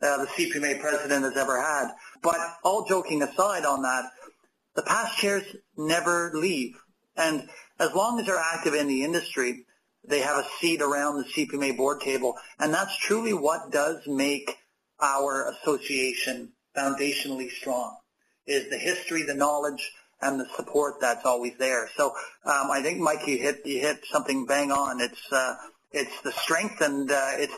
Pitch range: 140-175 Hz